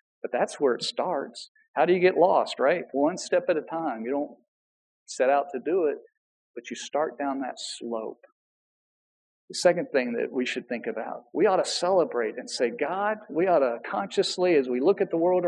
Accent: American